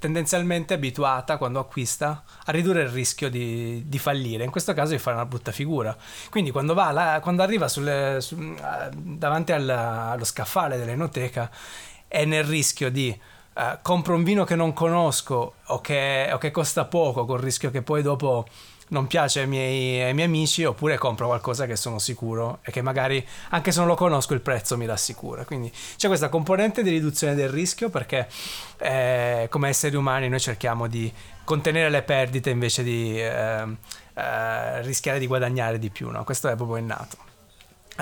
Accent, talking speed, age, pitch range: native, 180 wpm, 20-39, 125-160 Hz